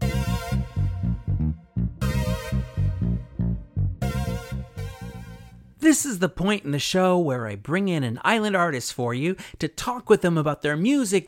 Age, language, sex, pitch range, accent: 40-59, English, male, 115-195 Hz, American